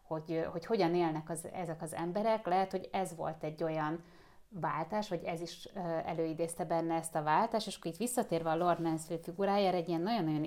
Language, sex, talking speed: Hungarian, female, 190 wpm